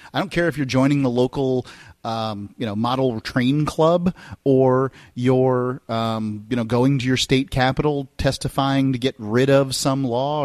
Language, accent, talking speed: English, American, 180 wpm